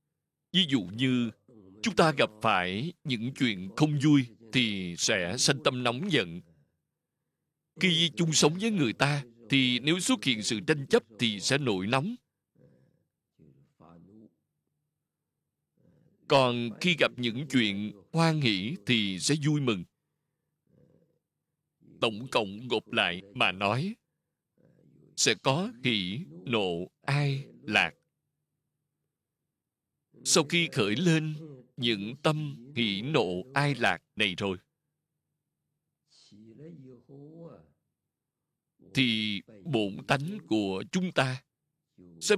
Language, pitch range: Vietnamese, 115-160 Hz